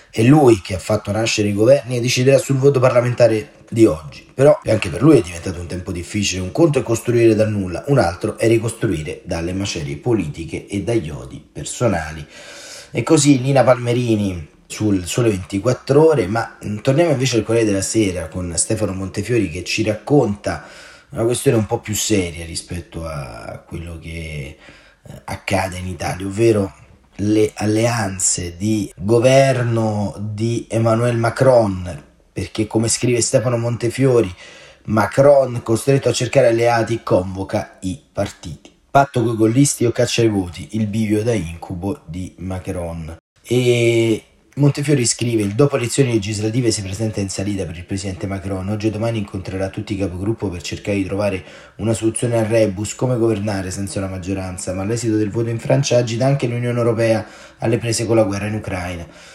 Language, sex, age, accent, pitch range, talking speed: Italian, male, 30-49, native, 95-120 Hz, 165 wpm